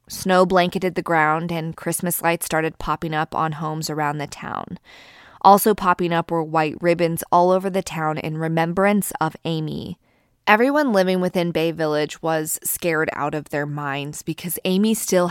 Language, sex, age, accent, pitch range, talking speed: English, female, 20-39, American, 155-185 Hz, 170 wpm